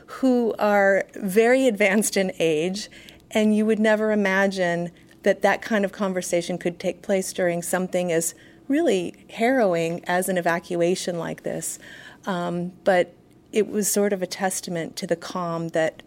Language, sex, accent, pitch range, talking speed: English, female, American, 175-205 Hz, 155 wpm